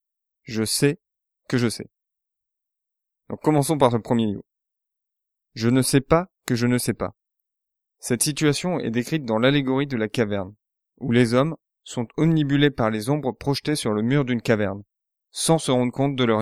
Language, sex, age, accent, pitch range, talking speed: French, male, 20-39, French, 115-140 Hz, 180 wpm